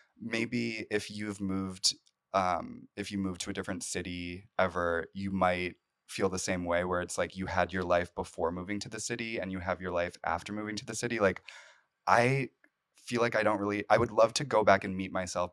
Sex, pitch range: male, 90-105 Hz